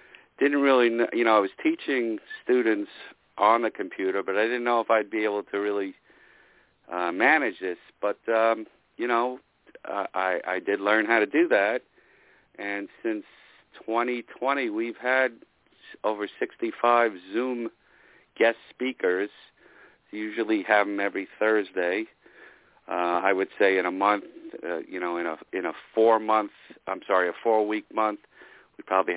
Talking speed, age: 160 wpm, 50-69